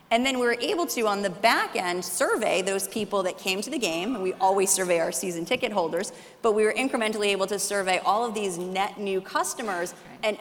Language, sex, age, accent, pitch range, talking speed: English, female, 30-49, American, 180-215 Hz, 230 wpm